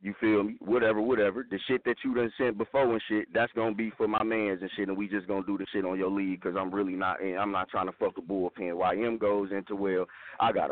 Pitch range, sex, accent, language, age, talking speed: 110-155 Hz, male, American, English, 30-49, 285 wpm